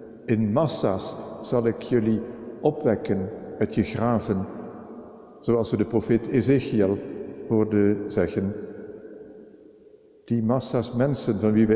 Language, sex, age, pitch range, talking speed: Dutch, male, 50-69, 110-125 Hz, 110 wpm